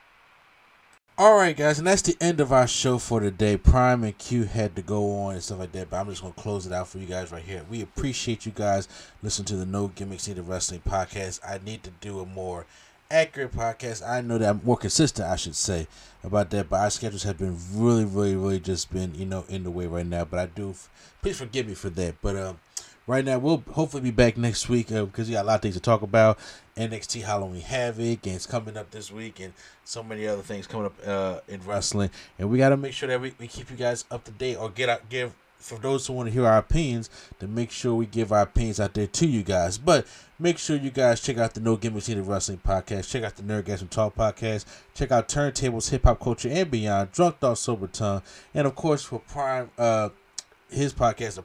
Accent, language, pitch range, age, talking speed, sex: American, English, 100-125 Hz, 20-39, 245 wpm, male